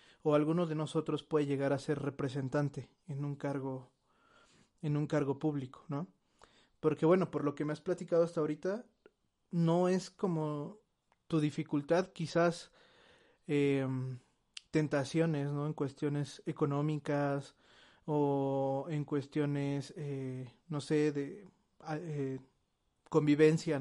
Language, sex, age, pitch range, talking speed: Spanish, male, 30-49, 145-165 Hz, 120 wpm